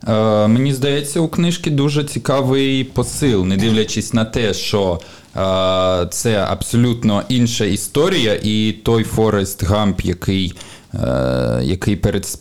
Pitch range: 105-140 Hz